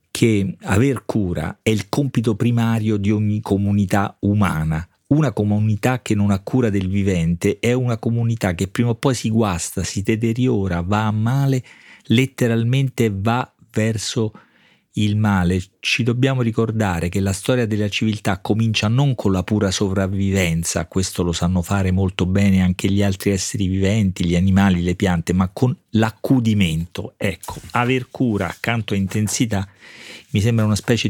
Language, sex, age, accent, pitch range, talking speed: Italian, male, 40-59, native, 95-110 Hz, 155 wpm